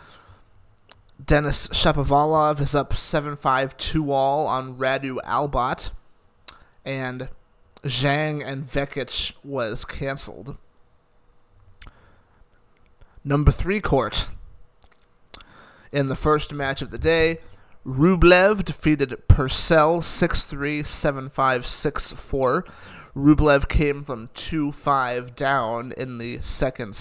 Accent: American